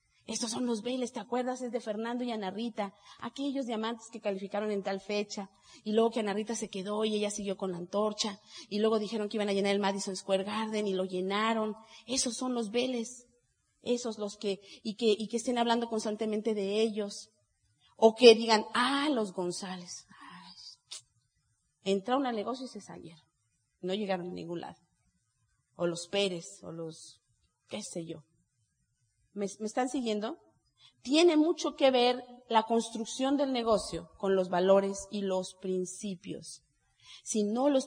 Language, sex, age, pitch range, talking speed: Spanish, female, 30-49, 195-235 Hz, 170 wpm